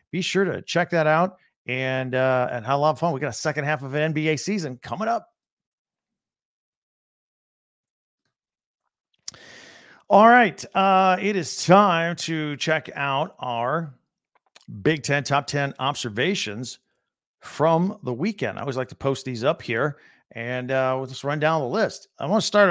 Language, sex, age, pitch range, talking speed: English, male, 50-69, 140-195 Hz, 165 wpm